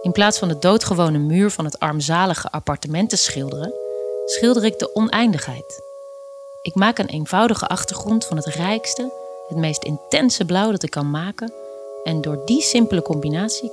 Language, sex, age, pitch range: Dutch, female, 30-49, 150-190 Hz